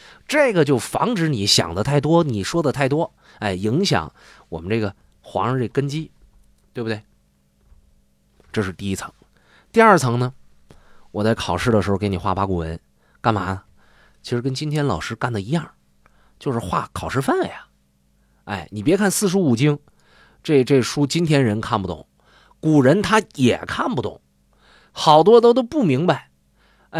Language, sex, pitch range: Chinese, male, 100-150 Hz